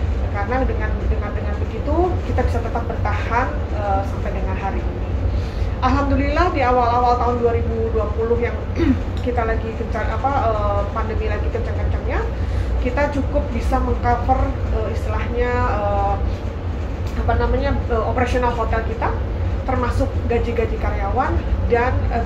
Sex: female